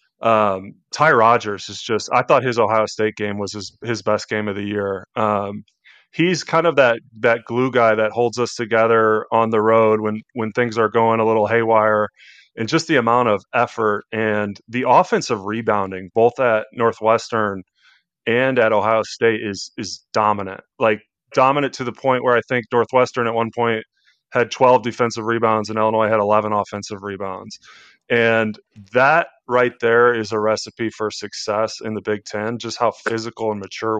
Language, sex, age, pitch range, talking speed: English, male, 30-49, 105-120 Hz, 180 wpm